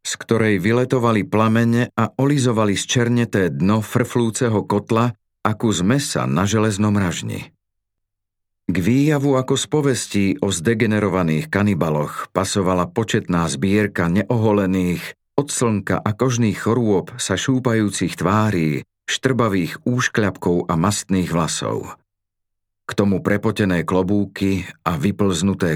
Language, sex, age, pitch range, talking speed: Slovak, male, 40-59, 95-115 Hz, 110 wpm